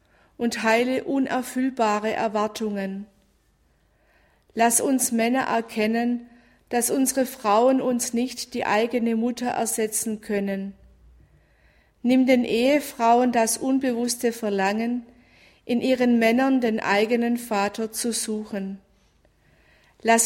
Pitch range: 220-250 Hz